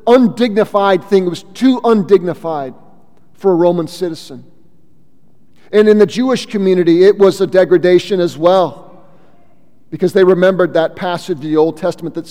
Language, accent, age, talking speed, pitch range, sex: English, American, 40-59, 150 wpm, 150-175 Hz, male